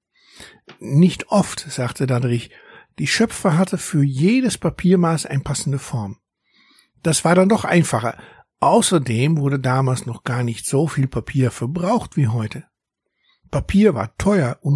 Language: German